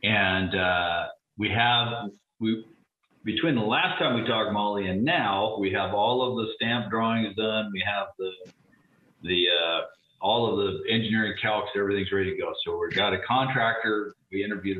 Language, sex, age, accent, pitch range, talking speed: English, male, 50-69, American, 95-120 Hz, 175 wpm